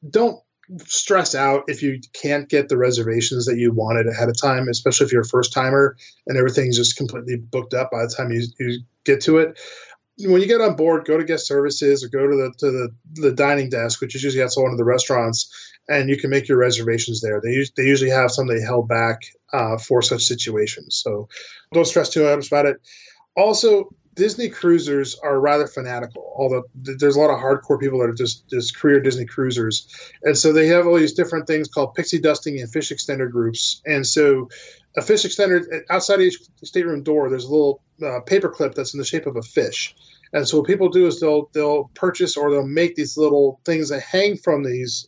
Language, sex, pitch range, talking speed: English, male, 125-155 Hz, 215 wpm